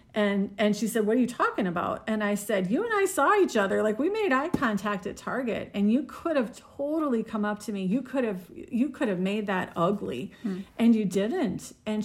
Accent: American